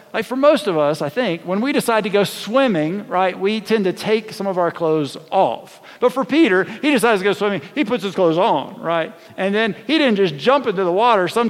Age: 50-69